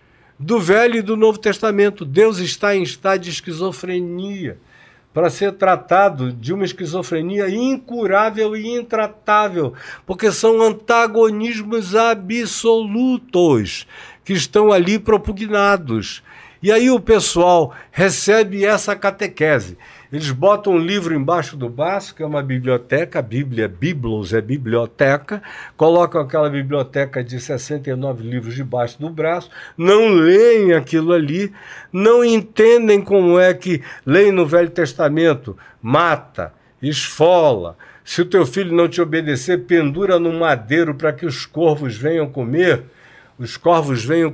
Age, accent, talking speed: 60-79, Brazilian, 130 wpm